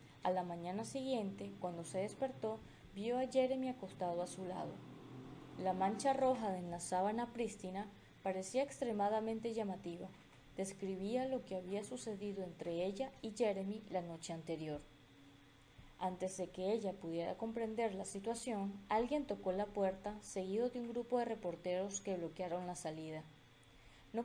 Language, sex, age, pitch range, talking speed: Spanish, female, 20-39, 180-230 Hz, 145 wpm